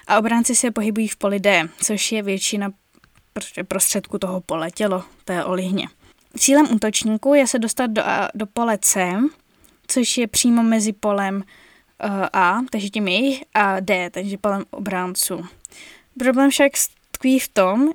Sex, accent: female, native